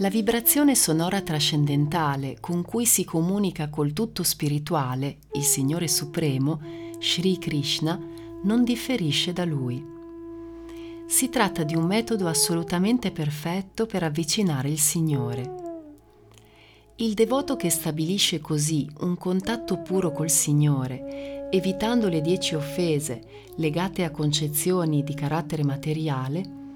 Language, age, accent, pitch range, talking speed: Italian, 40-59, native, 150-215 Hz, 115 wpm